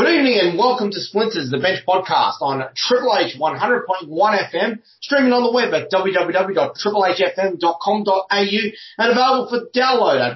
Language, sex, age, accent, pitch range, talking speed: English, male, 30-49, Australian, 145-195 Hz, 145 wpm